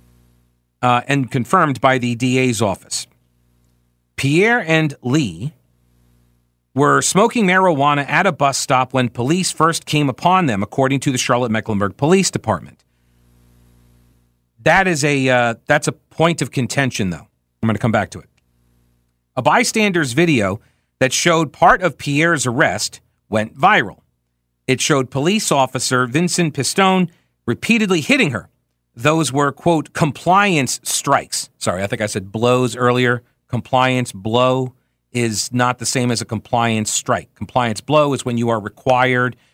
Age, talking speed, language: 40-59, 145 wpm, English